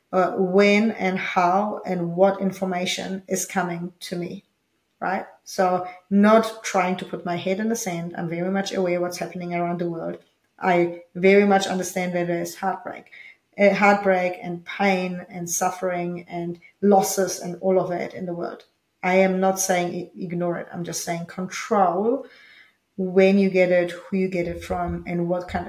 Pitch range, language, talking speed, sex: 175-195 Hz, English, 175 wpm, female